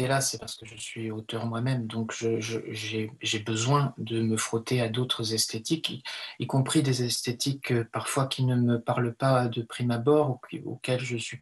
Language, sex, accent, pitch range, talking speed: French, male, French, 120-145 Hz, 210 wpm